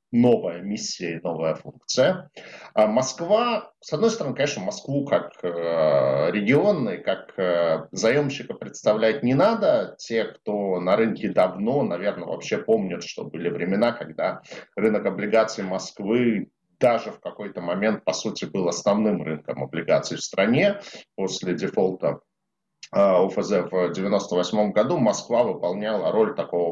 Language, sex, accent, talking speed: Russian, male, native, 125 wpm